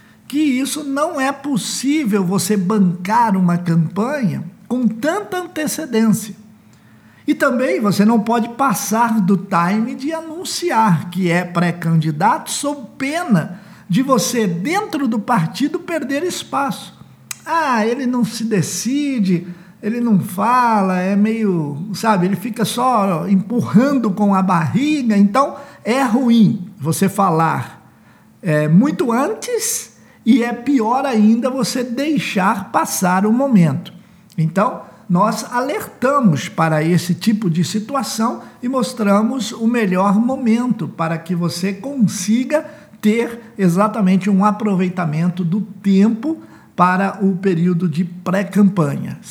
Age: 50-69